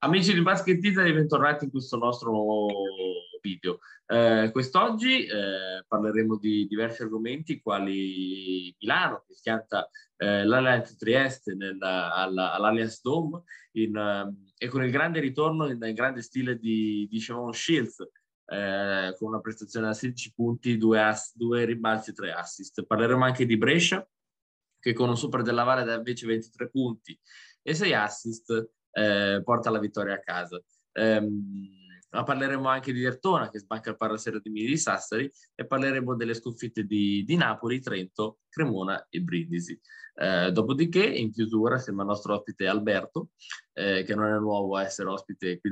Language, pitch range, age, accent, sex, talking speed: Italian, 105-130 Hz, 20-39, native, male, 160 wpm